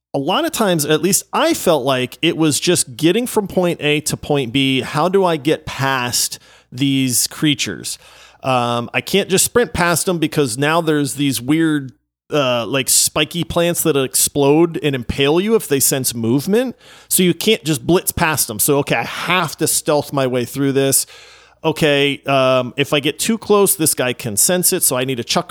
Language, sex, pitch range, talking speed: English, male, 130-175 Hz, 200 wpm